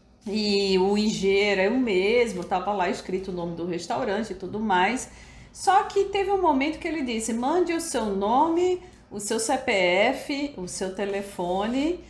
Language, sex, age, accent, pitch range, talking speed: Portuguese, female, 40-59, Brazilian, 195-280 Hz, 170 wpm